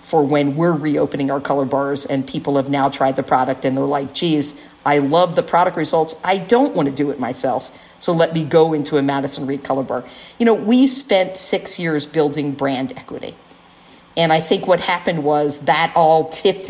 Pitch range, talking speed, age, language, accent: 150-185 Hz, 210 wpm, 50-69, English, American